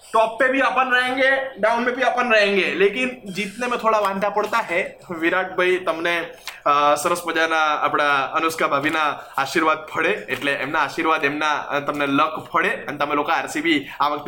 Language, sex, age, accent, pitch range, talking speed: Gujarati, male, 20-39, native, 170-225 Hz, 85 wpm